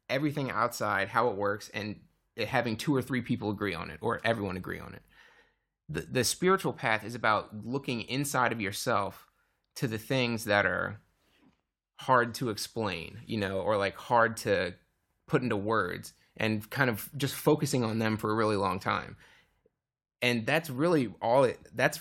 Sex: male